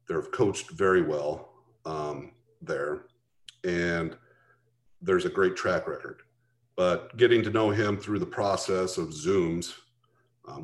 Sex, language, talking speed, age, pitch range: male, English, 130 wpm, 40-59, 95-125 Hz